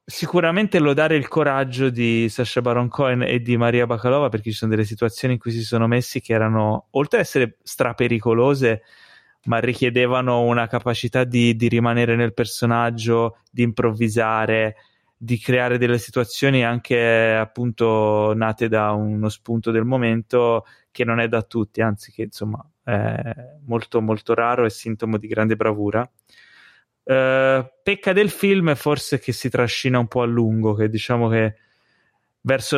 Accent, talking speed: native, 155 wpm